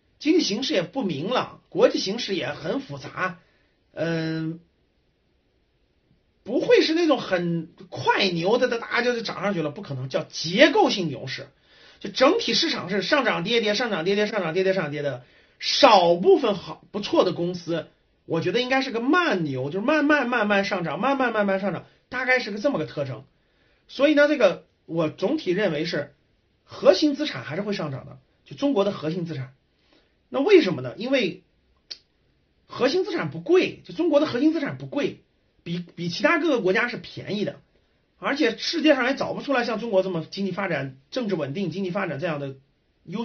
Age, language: 30-49, Chinese